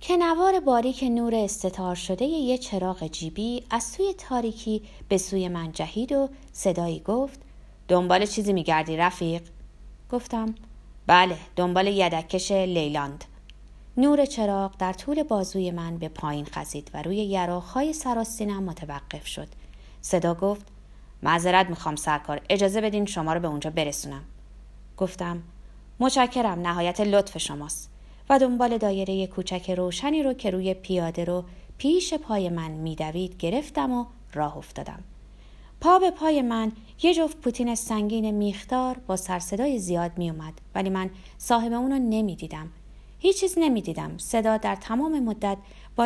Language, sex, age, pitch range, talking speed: Persian, female, 30-49, 175-245 Hz, 135 wpm